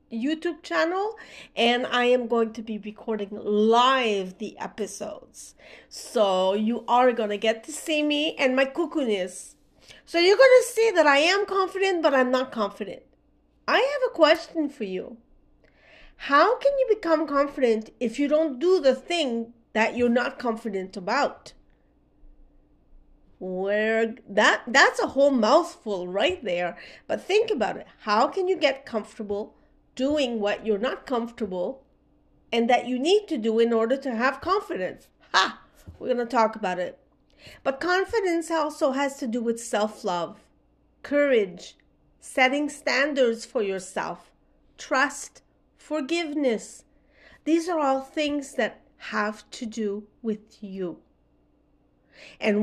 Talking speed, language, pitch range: 140 wpm, English, 215-310 Hz